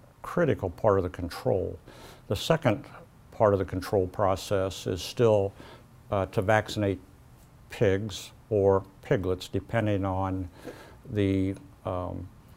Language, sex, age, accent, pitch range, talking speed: English, male, 60-79, American, 95-115 Hz, 115 wpm